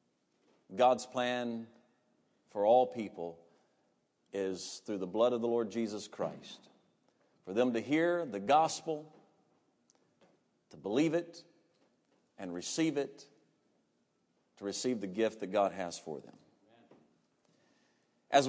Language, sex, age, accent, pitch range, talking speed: English, male, 50-69, American, 115-155 Hz, 115 wpm